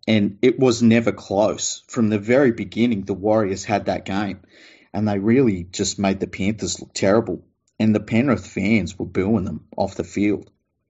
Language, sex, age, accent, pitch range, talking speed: English, male, 30-49, Australian, 95-110 Hz, 180 wpm